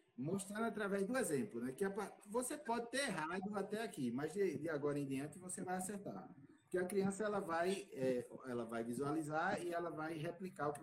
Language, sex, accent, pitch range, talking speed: Portuguese, male, Brazilian, 145-205 Hz, 200 wpm